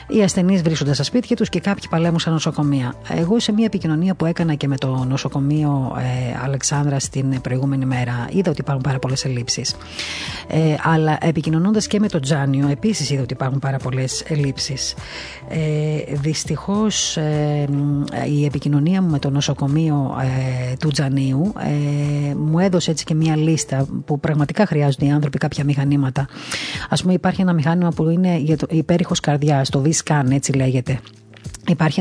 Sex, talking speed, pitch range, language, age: female, 165 wpm, 140-175 Hz, Greek, 30-49